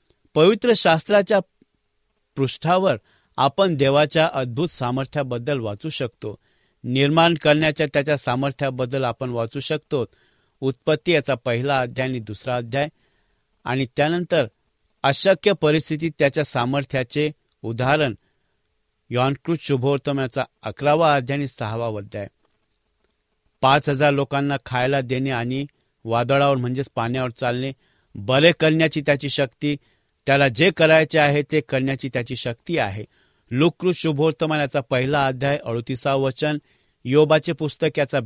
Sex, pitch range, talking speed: male, 125-155 Hz, 85 wpm